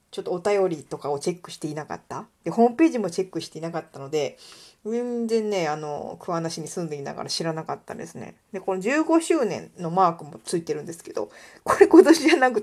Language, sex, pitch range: Japanese, female, 165-250 Hz